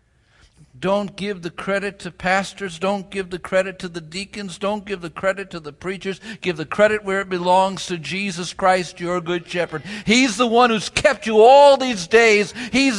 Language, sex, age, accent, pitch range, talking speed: English, male, 60-79, American, 160-210 Hz, 195 wpm